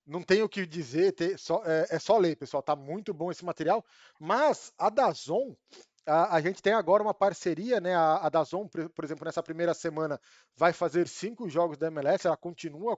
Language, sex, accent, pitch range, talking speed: Portuguese, male, Brazilian, 165-195 Hz, 180 wpm